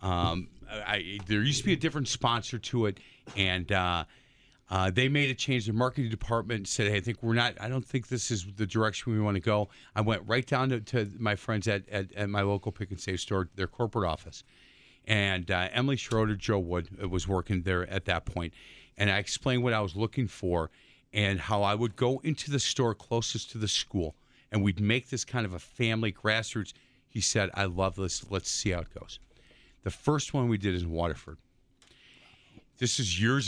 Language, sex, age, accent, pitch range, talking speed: English, male, 40-59, American, 100-130 Hz, 215 wpm